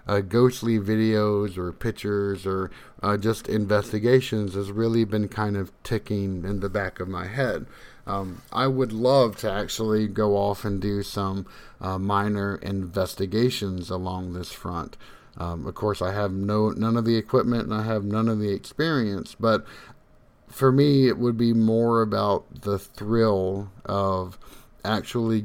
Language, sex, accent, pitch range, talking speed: English, male, American, 95-110 Hz, 160 wpm